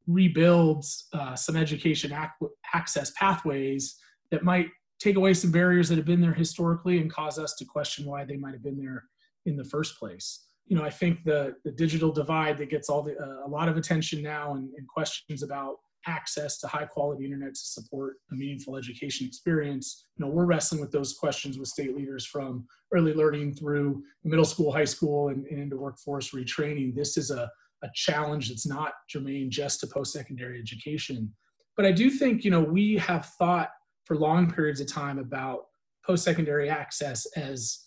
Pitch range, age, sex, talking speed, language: 140-165 Hz, 30-49, male, 185 wpm, English